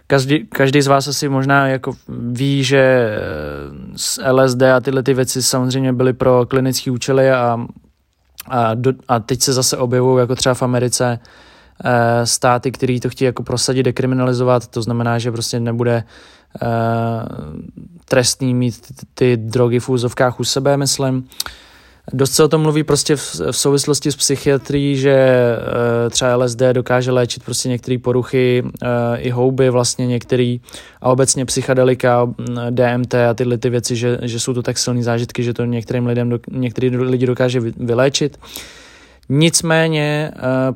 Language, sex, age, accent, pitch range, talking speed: Czech, male, 20-39, native, 125-135 Hz, 155 wpm